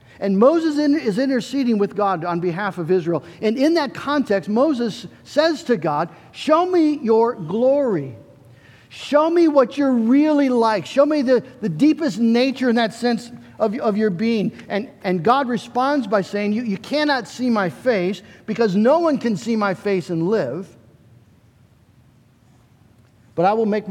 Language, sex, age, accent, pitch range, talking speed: English, male, 50-69, American, 140-230 Hz, 165 wpm